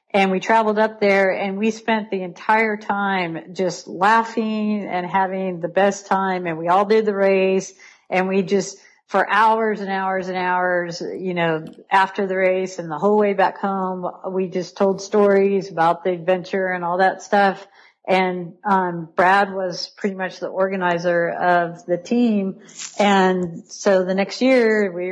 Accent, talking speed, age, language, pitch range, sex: American, 170 wpm, 50-69, English, 175-200 Hz, female